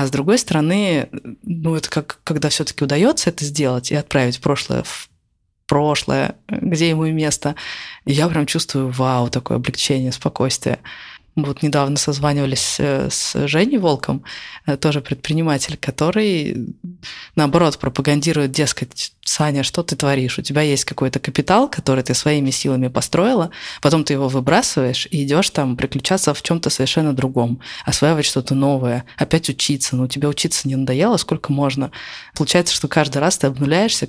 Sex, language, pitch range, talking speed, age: female, Russian, 140-170 Hz, 155 wpm, 20-39